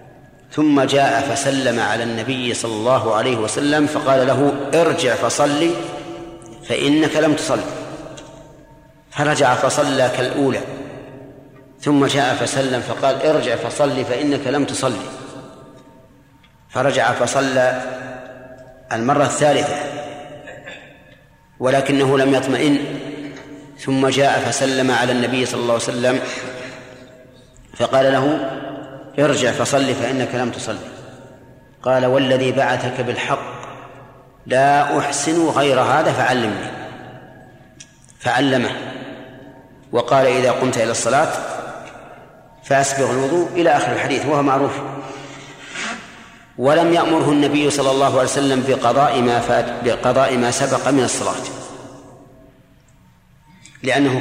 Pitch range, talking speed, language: 130-145 Hz, 100 wpm, Arabic